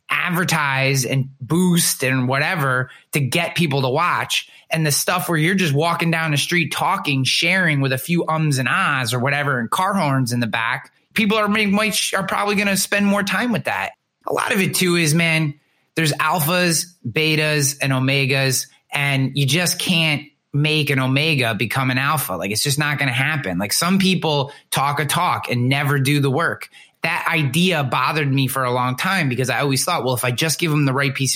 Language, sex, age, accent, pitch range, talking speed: English, male, 20-39, American, 130-165 Hz, 210 wpm